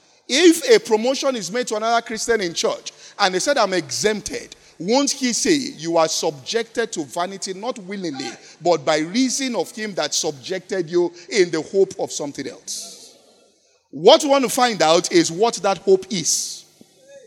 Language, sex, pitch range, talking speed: English, male, 185-265 Hz, 175 wpm